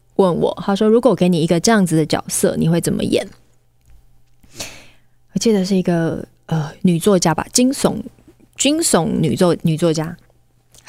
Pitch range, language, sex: 160-205 Hz, Chinese, female